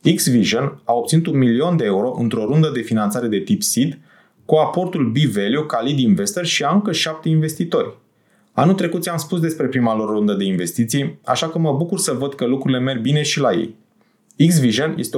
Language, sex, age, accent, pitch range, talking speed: Romanian, male, 20-39, native, 120-170 Hz, 200 wpm